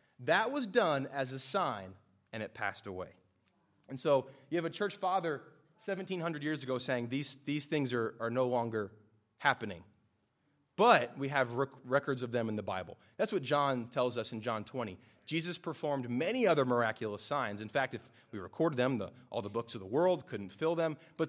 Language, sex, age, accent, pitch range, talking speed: English, male, 30-49, American, 110-140 Hz, 195 wpm